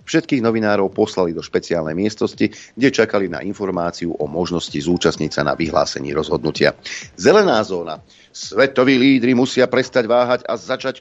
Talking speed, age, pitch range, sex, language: 140 wpm, 40-59, 85-120 Hz, male, Slovak